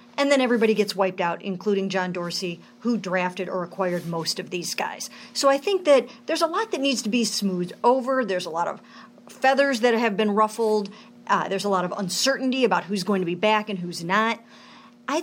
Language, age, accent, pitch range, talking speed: English, 50-69, American, 195-245 Hz, 215 wpm